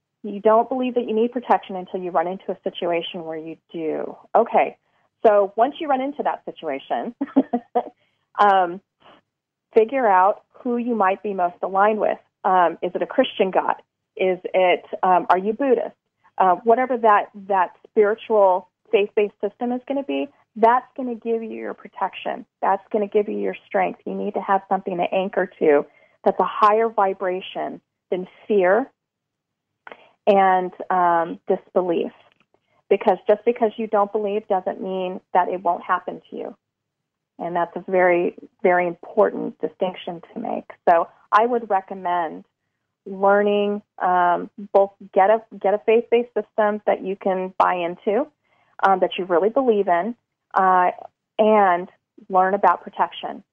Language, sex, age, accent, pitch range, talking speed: English, female, 30-49, American, 180-220 Hz, 155 wpm